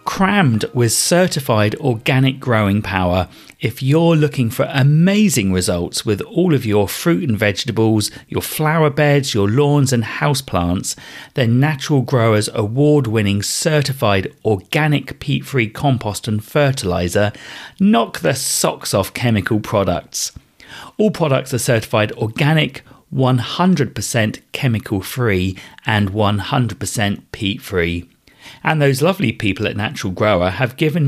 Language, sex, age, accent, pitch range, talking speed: English, male, 40-59, British, 105-145 Hz, 120 wpm